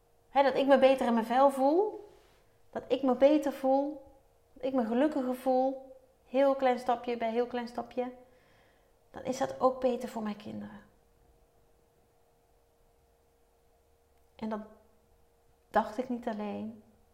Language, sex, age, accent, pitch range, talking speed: Dutch, female, 30-49, Dutch, 220-275 Hz, 135 wpm